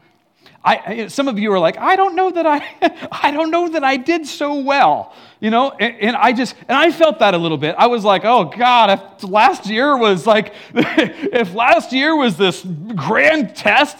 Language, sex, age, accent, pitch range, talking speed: English, male, 40-59, American, 230-300 Hz, 215 wpm